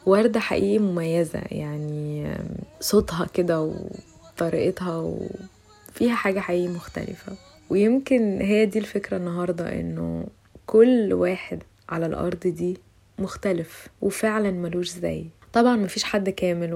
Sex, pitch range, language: female, 175-205 Hz, Arabic